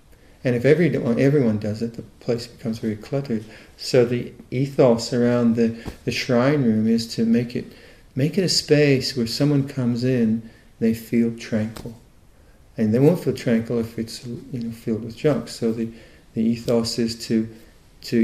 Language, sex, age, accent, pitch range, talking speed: English, male, 40-59, American, 115-130 Hz, 175 wpm